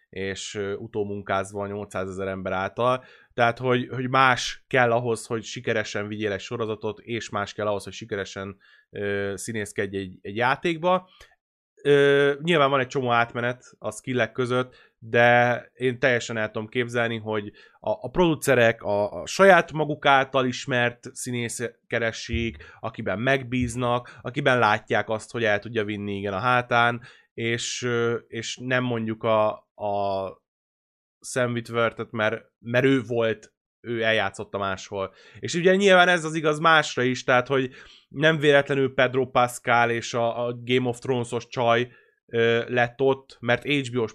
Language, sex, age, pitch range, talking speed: Hungarian, male, 20-39, 110-135 Hz, 145 wpm